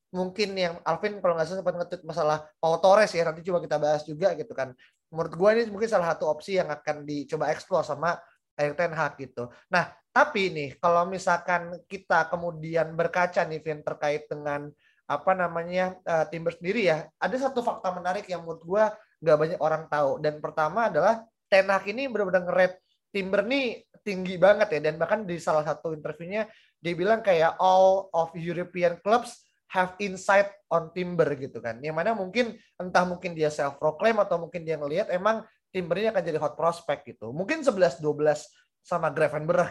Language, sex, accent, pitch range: Indonesian, male, native, 155-195 Hz